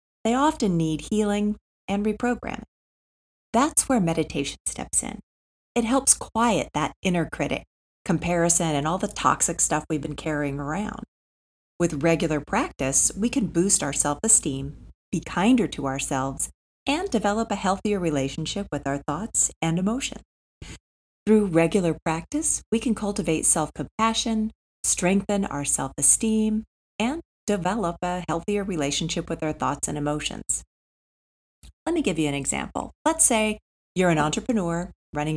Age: 40-59